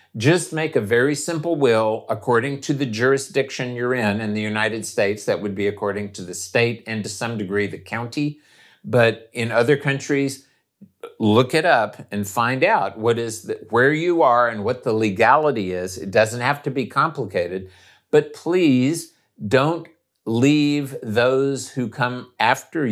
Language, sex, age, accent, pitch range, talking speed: English, male, 50-69, American, 110-145 Hz, 170 wpm